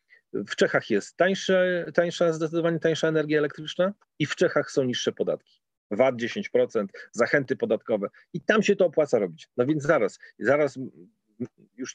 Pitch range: 140-205 Hz